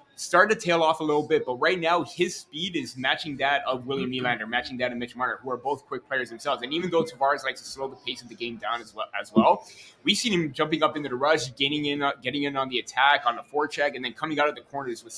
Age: 20-39